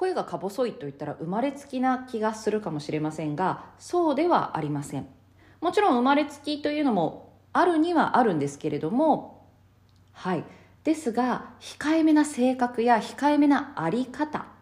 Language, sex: Japanese, female